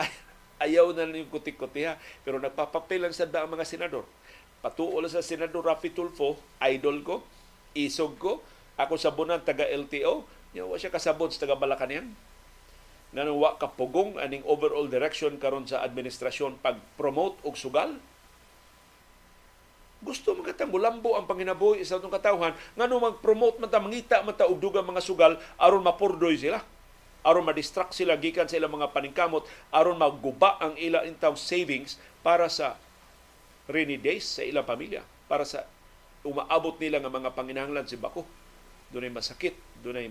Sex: male